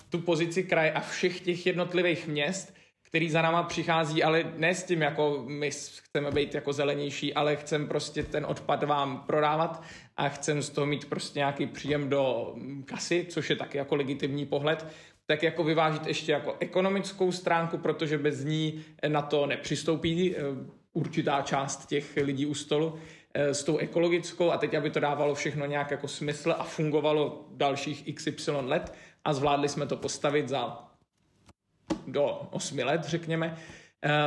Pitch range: 145-165 Hz